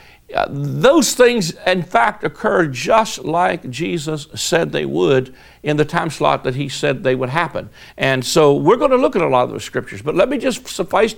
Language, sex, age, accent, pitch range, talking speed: English, male, 60-79, American, 135-185 Hz, 210 wpm